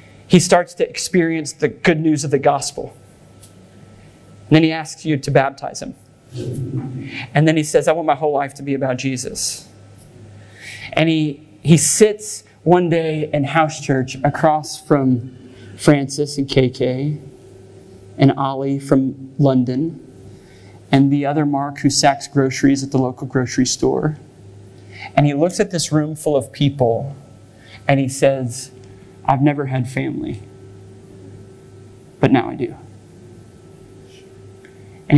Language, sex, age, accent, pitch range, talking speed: English, male, 30-49, American, 105-150 Hz, 140 wpm